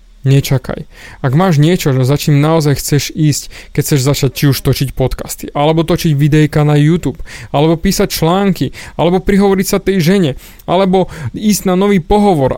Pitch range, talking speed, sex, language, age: 135-180 Hz, 160 wpm, male, Slovak, 30-49